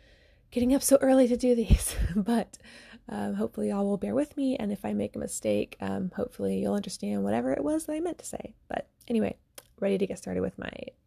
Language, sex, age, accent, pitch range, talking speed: English, female, 20-39, American, 185-240 Hz, 220 wpm